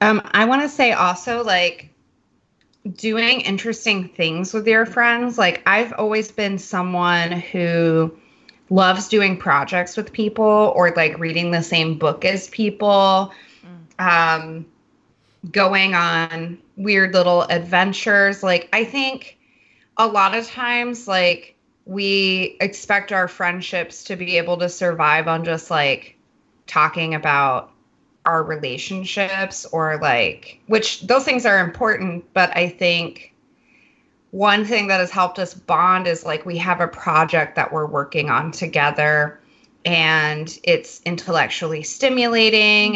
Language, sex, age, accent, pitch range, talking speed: English, female, 20-39, American, 170-215 Hz, 130 wpm